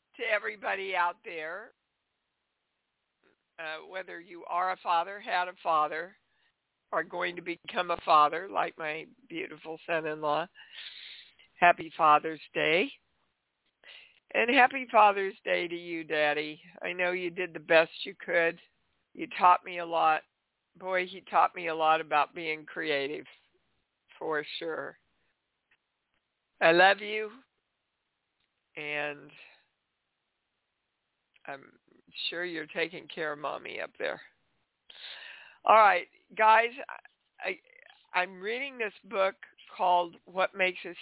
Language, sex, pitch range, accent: English, female, 165-210 Hz, American